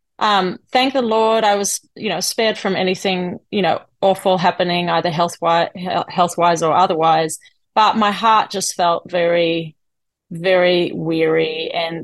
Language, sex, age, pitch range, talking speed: English, female, 30-49, 170-195 Hz, 145 wpm